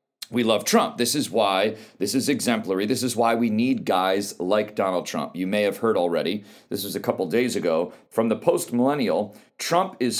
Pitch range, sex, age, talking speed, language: 105-140 Hz, male, 40-59, 200 wpm, English